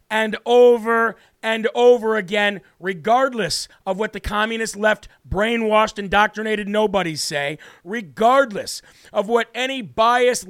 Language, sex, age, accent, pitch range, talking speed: English, male, 50-69, American, 195-235 Hz, 115 wpm